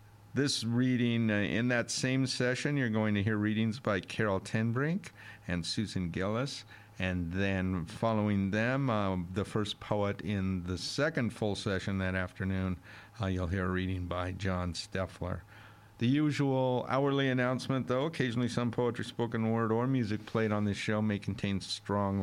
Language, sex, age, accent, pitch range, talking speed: English, male, 50-69, American, 95-115 Hz, 160 wpm